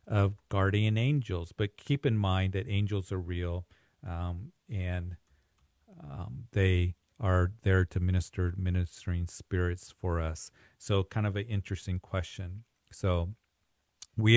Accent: American